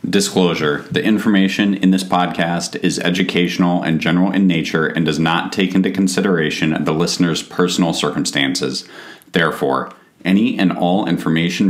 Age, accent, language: 30-49, American, English